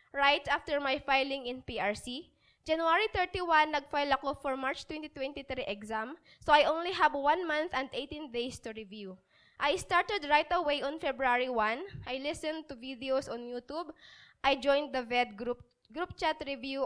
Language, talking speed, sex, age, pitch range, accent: English, 165 wpm, female, 20-39, 265-315 Hz, Filipino